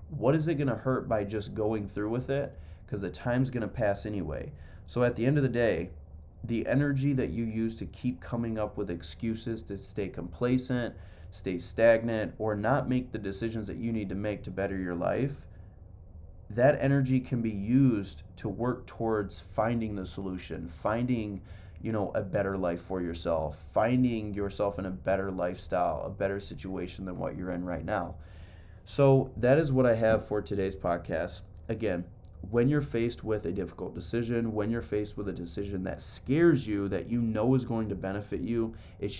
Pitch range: 95-115 Hz